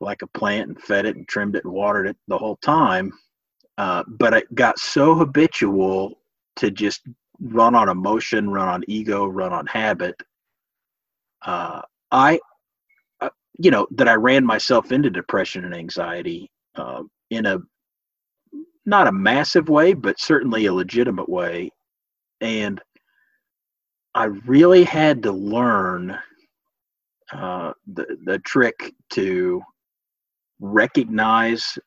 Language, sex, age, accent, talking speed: English, male, 40-59, American, 130 wpm